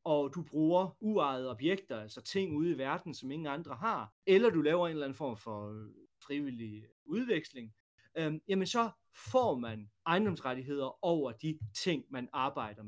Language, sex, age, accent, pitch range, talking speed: Danish, male, 30-49, native, 125-175 Hz, 160 wpm